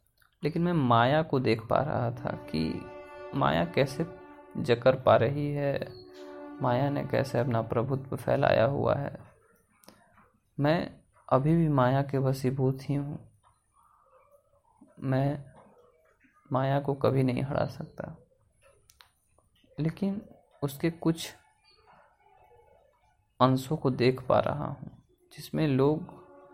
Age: 30-49